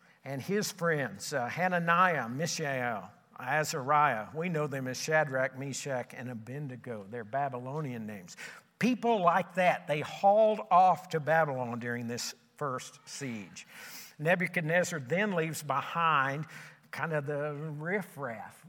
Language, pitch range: English, 135-185 Hz